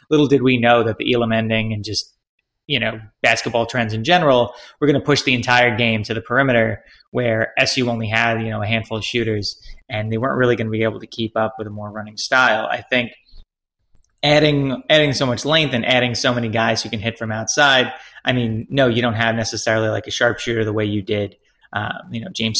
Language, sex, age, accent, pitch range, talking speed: English, male, 20-39, American, 110-125 Hz, 230 wpm